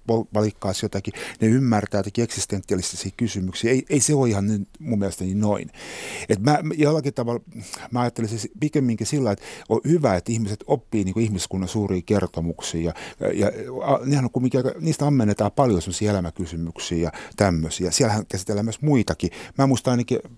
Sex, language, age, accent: male, Finnish, 60-79, native